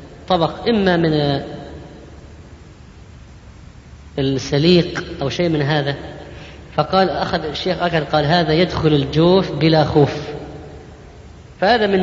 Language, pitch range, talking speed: Arabic, 160-220 Hz, 100 wpm